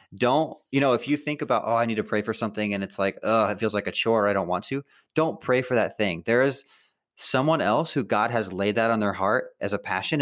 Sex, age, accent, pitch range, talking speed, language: male, 20-39, American, 95-120 Hz, 275 wpm, English